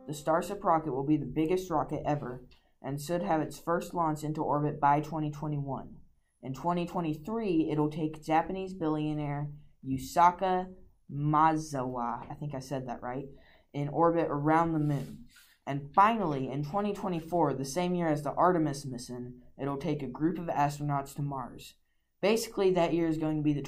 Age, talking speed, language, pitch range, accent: 20-39, 165 wpm, English, 140-170 Hz, American